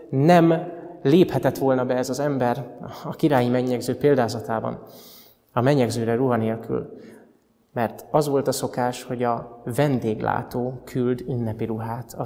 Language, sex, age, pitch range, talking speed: Hungarian, male, 20-39, 120-140 Hz, 130 wpm